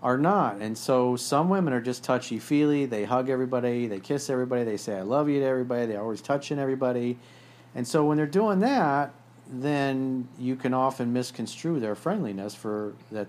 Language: English